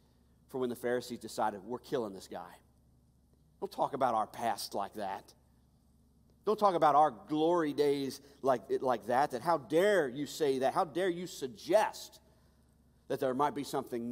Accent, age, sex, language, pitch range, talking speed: American, 40-59, male, English, 90-145 Hz, 170 wpm